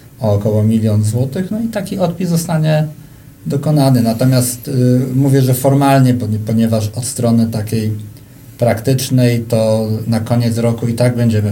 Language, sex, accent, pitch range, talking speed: Polish, male, native, 110-130 Hz, 140 wpm